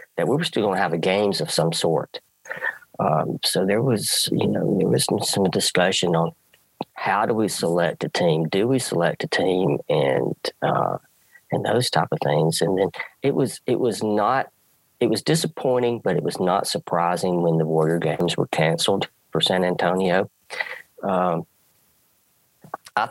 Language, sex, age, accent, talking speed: English, male, 40-59, American, 175 wpm